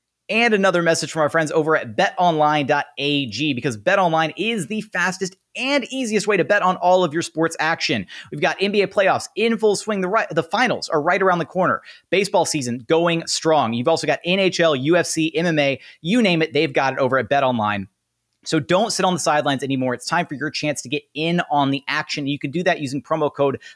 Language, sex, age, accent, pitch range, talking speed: English, male, 30-49, American, 135-180 Hz, 215 wpm